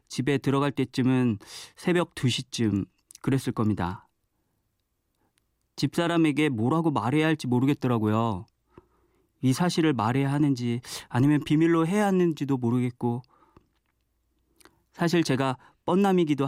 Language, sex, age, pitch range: Korean, male, 40-59, 115-150 Hz